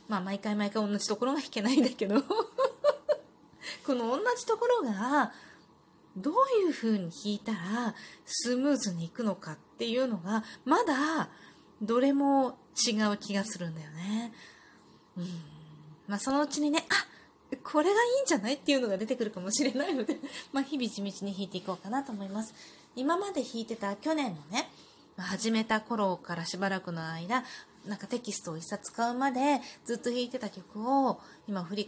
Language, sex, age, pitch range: Japanese, female, 20-39, 195-275 Hz